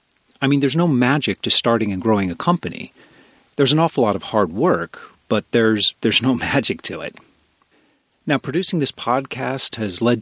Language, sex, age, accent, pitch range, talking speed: English, male, 40-59, American, 100-130 Hz, 180 wpm